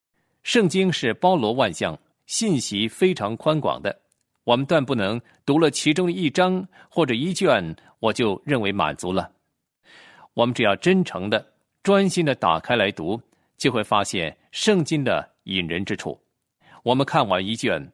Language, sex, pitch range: Chinese, male, 120-185 Hz